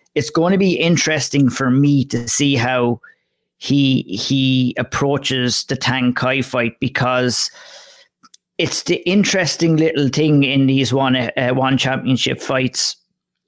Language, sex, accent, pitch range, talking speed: English, male, Irish, 125-150 Hz, 135 wpm